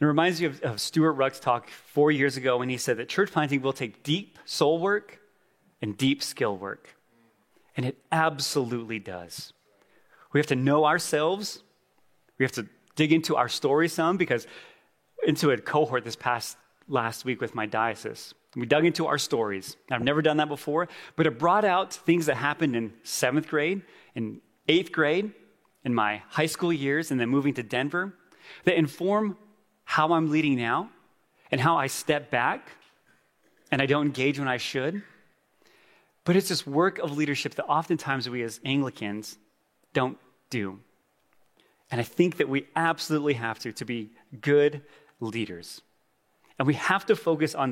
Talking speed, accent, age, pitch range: 170 wpm, American, 30-49, 120-160 Hz